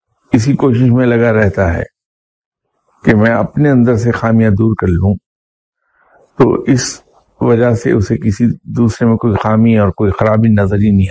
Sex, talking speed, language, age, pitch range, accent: male, 160 wpm, English, 60-79, 105-125 Hz, Indian